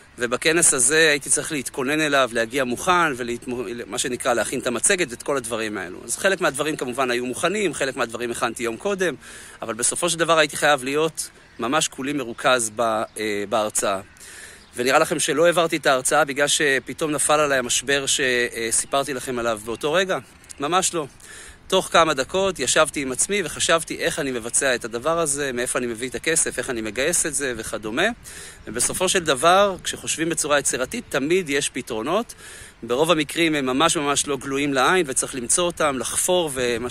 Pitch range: 120-165 Hz